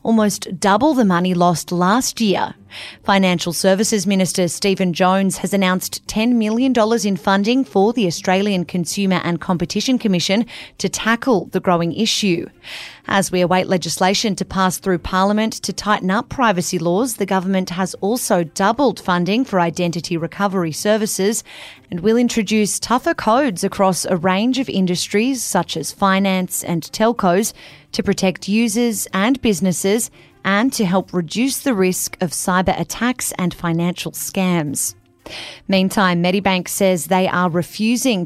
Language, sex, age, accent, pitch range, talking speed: English, female, 30-49, Australian, 180-215 Hz, 145 wpm